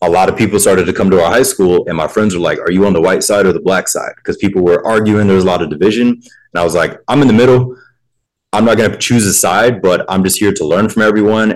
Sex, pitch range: male, 95-125 Hz